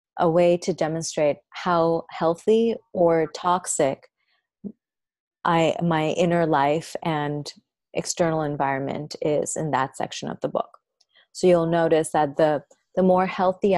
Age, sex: 30-49, female